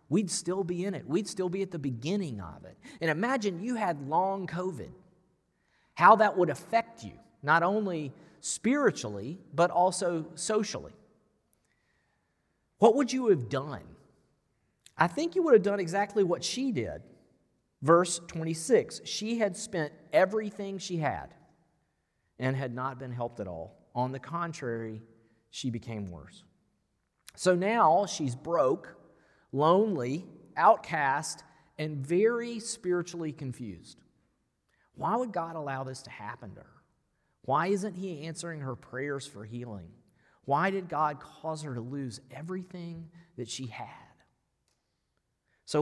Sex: male